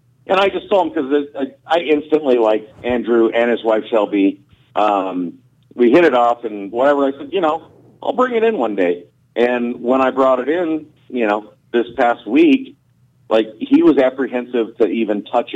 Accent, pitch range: American, 110-140 Hz